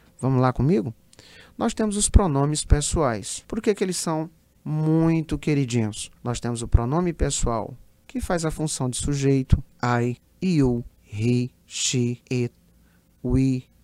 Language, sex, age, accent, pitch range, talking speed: Portuguese, male, 40-59, Brazilian, 115-155 Hz, 140 wpm